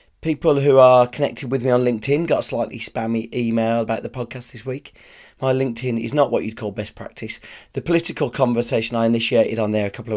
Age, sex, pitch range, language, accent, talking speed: 40-59, male, 110-140 Hz, English, British, 220 wpm